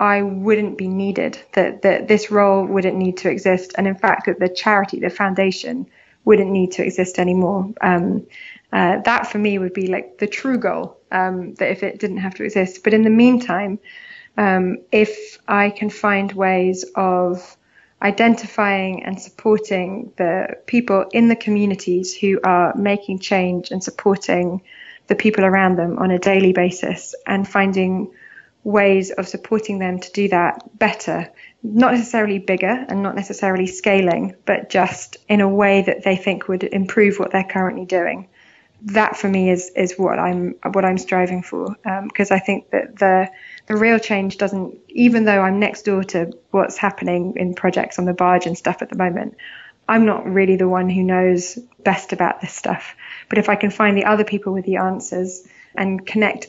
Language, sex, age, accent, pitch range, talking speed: English, female, 20-39, British, 185-210 Hz, 180 wpm